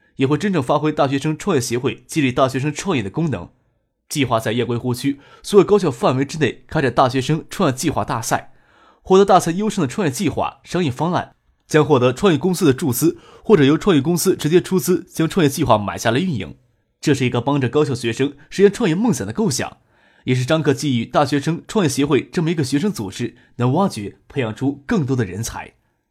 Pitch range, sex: 130-175 Hz, male